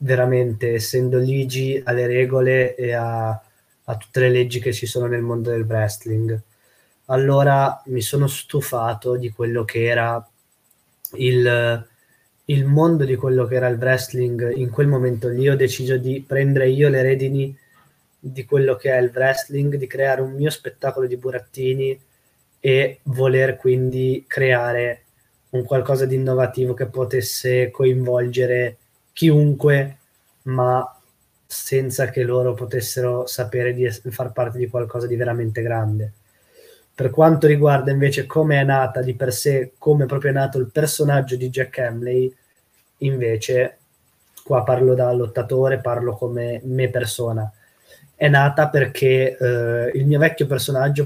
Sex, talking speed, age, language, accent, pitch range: male, 140 wpm, 20-39, Italian, native, 125-135 Hz